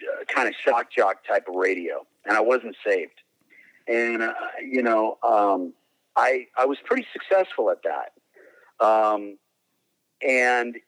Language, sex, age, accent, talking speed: English, male, 50-69, American, 140 wpm